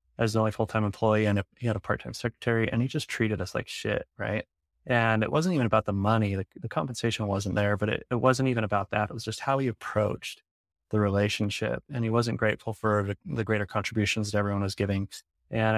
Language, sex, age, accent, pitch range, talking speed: English, male, 20-39, American, 100-115 Hz, 230 wpm